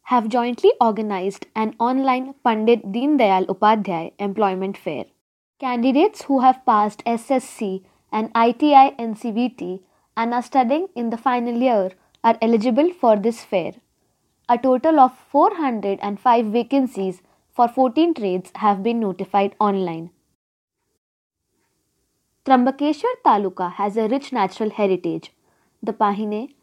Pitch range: 205-260 Hz